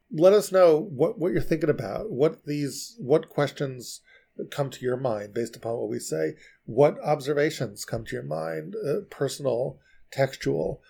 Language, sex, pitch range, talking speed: English, male, 120-150 Hz, 165 wpm